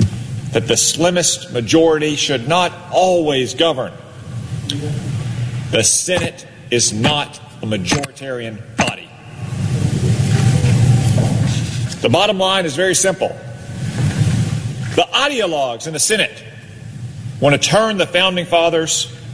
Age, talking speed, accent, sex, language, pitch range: 40-59, 100 wpm, American, male, English, 125-165 Hz